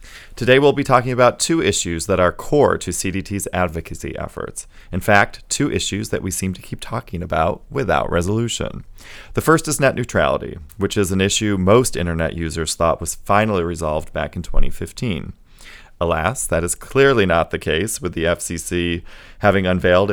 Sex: male